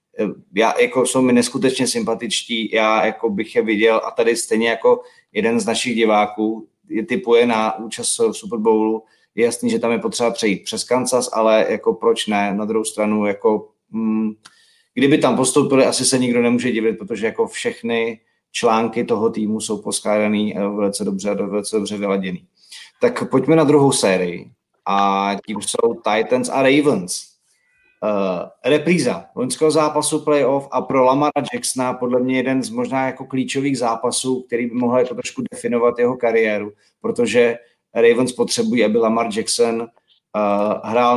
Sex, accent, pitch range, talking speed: male, native, 110-150 Hz, 160 wpm